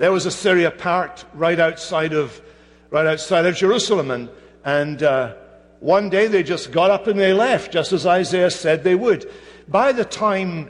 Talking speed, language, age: 185 wpm, English, 60-79